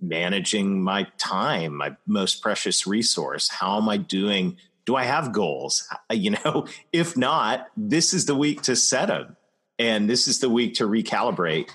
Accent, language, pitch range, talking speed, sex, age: American, English, 90-130 Hz, 170 wpm, male, 40-59